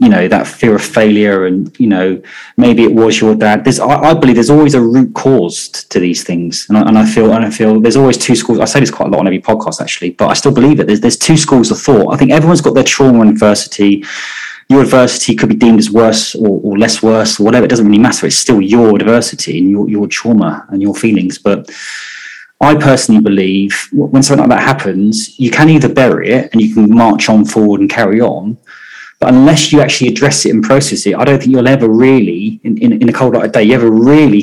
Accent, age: British, 20-39